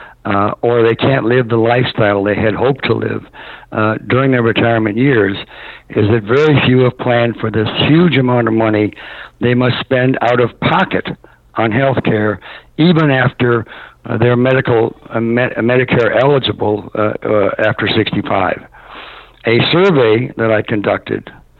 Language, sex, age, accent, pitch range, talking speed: English, male, 60-79, American, 115-135 Hz, 155 wpm